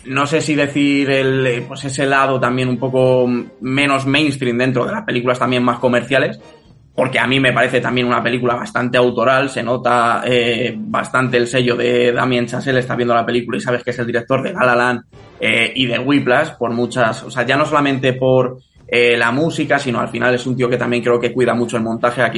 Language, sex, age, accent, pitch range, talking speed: Spanish, male, 20-39, Spanish, 120-130 Hz, 220 wpm